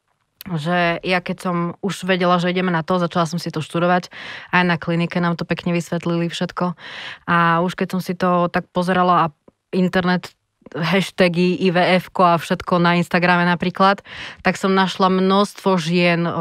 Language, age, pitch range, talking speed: Slovak, 20-39, 170-185 Hz, 165 wpm